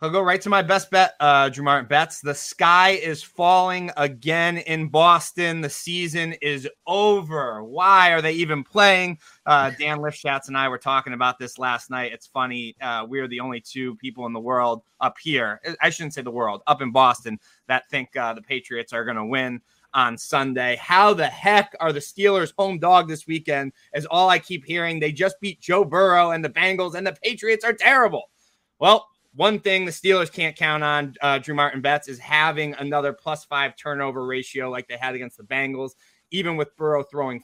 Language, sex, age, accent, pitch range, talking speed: English, male, 20-39, American, 135-170 Hz, 205 wpm